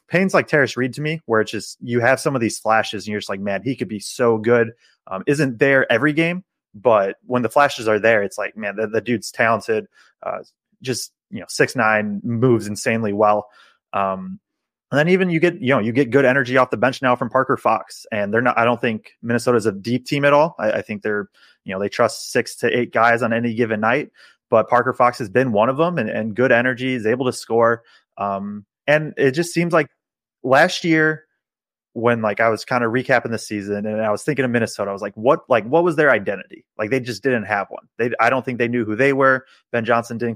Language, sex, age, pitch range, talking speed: English, male, 20-39, 110-130 Hz, 245 wpm